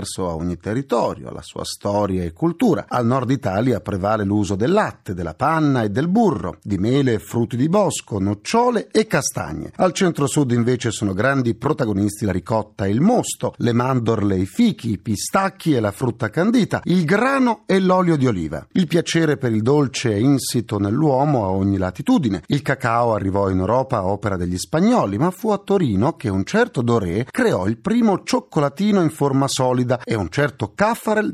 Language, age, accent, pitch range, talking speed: Italian, 40-59, native, 110-175 Hz, 180 wpm